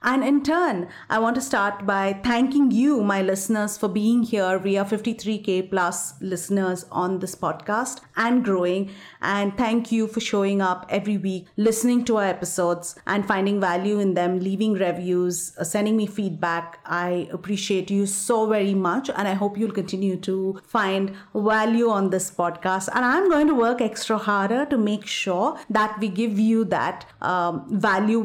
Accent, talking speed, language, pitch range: Indian, 175 wpm, English, 190-225 Hz